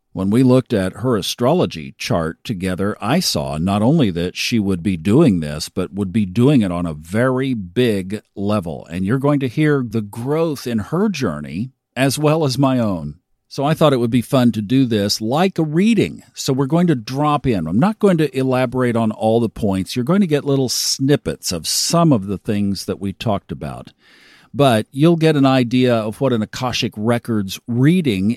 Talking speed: 205 wpm